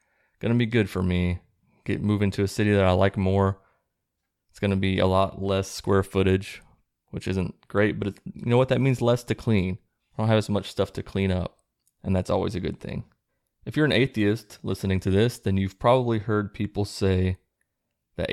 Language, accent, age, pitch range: English, American, 20-39, 95-105 Hz